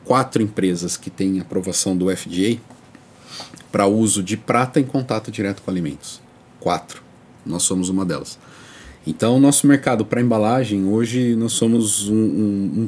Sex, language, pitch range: male, Portuguese, 95-130 Hz